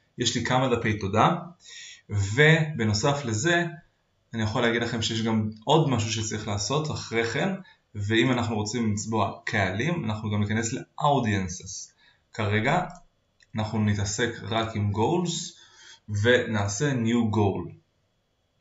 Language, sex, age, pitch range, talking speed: Hebrew, male, 20-39, 105-140 Hz, 120 wpm